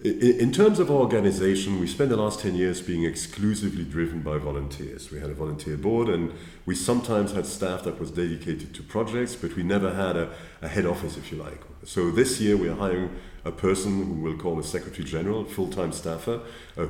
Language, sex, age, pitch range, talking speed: English, male, 40-59, 80-100 Hz, 205 wpm